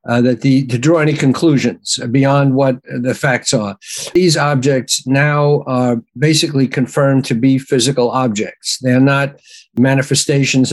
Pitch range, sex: 125-150 Hz, male